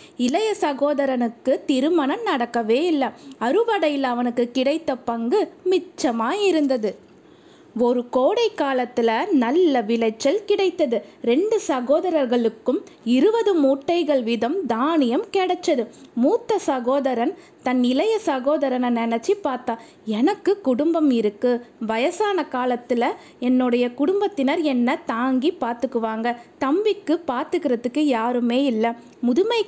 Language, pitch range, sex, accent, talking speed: Tamil, 245-335 Hz, female, native, 90 wpm